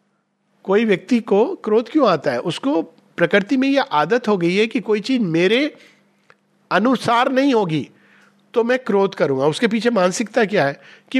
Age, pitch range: 50-69, 180-240 Hz